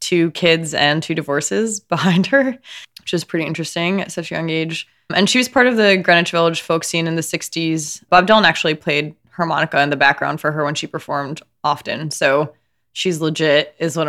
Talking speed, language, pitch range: 205 wpm, English, 150-180 Hz